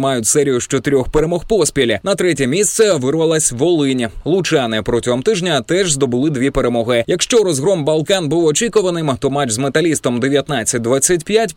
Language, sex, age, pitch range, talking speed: Ukrainian, male, 20-39, 115-155 Hz, 145 wpm